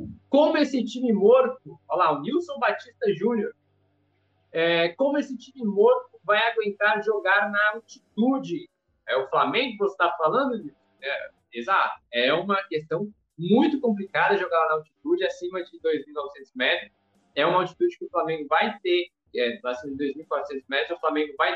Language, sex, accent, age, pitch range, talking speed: Portuguese, male, Brazilian, 20-39, 170-255 Hz, 160 wpm